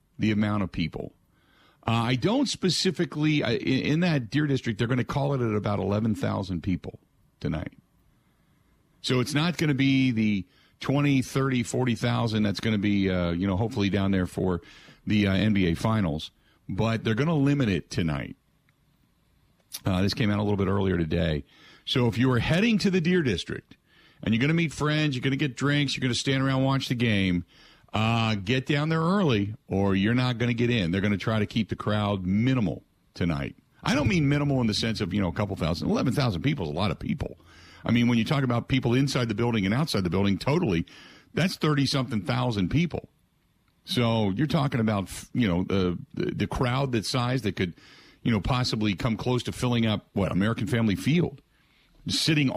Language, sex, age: English, male, 50-69